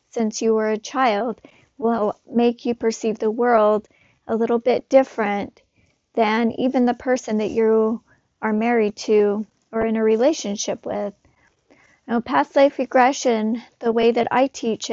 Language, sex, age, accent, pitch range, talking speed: English, female, 40-59, American, 215-250 Hz, 155 wpm